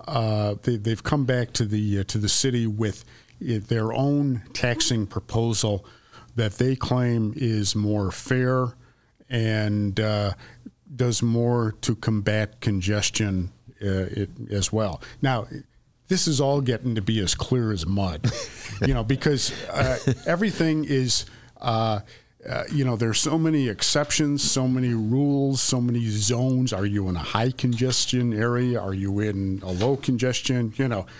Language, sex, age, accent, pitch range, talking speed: English, male, 50-69, American, 110-130 Hz, 155 wpm